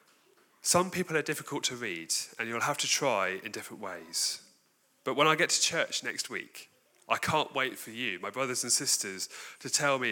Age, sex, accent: 30-49, male, British